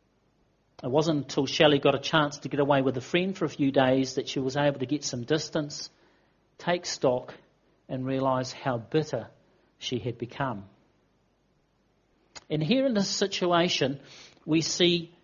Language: English